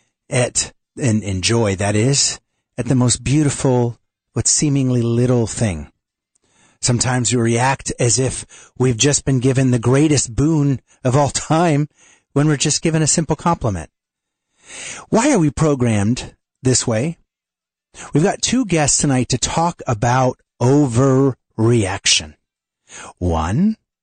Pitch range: 100-135 Hz